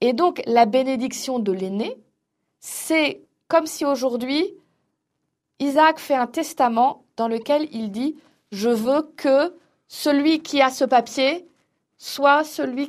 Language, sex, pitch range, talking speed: French, female, 235-300 Hz, 130 wpm